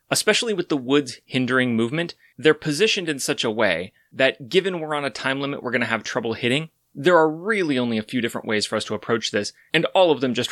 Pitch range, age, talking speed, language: 110-140 Hz, 30-49, 245 wpm, English